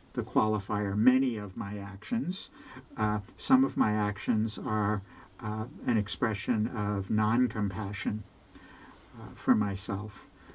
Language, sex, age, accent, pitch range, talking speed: English, male, 60-79, American, 100-115 Hz, 110 wpm